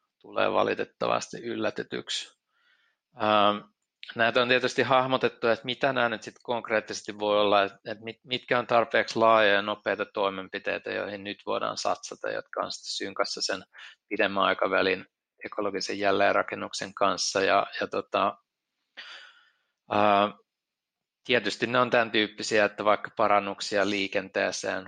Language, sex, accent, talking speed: Finnish, male, native, 120 wpm